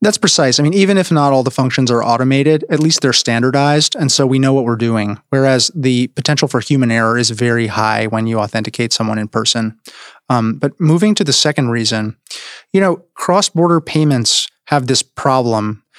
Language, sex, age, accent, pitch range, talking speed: English, male, 30-49, American, 115-145 Hz, 200 wpm